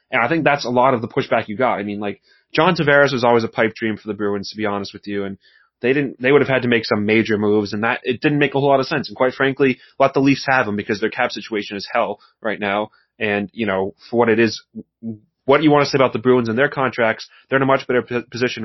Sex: male